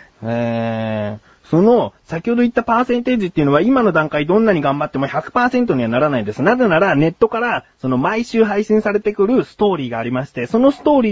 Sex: male